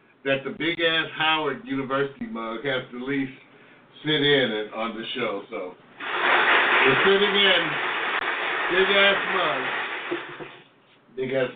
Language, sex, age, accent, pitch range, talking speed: English, male, 60-79, American, 140-180 Hz, 120 wpm